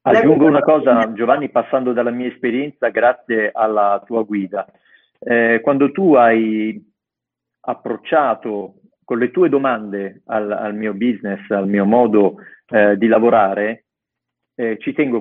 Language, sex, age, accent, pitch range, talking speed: Italian, male, 40-59, native, 110-130 Hz, 135 wpm